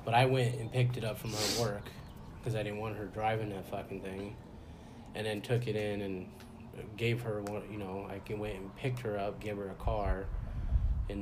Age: 20-39